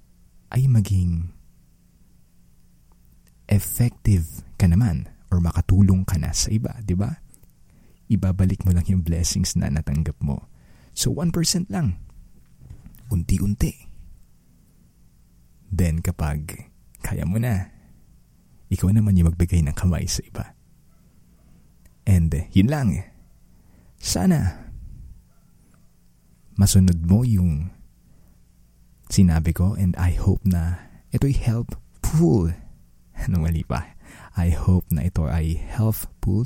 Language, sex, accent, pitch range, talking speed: Filipino, male, native, 75-100 Hz, 100 wpm